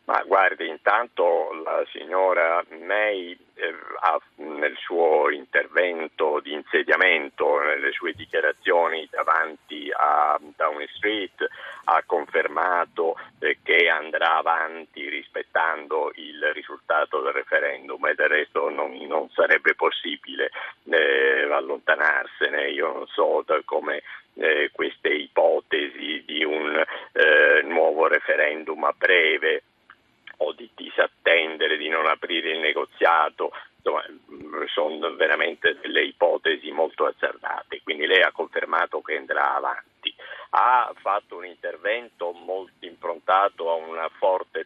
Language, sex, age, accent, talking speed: Italian, male, 50-69, native, 110 wpm